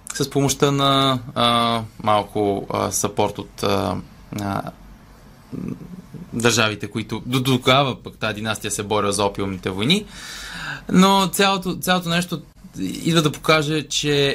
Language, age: Bulgarian, 20-39